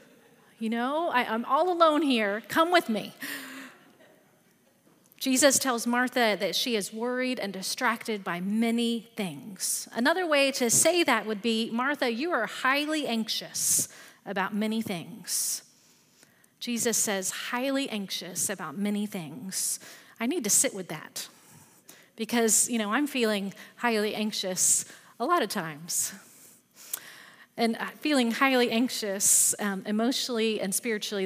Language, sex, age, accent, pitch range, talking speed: English, female, 40-59, American, 210-255 Hz, 130 wpm